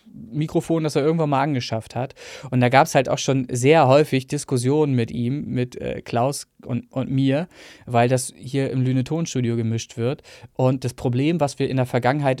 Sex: male